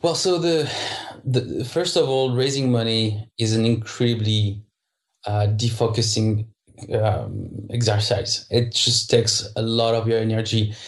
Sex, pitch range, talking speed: male, 115-130 Hz, 130 wpm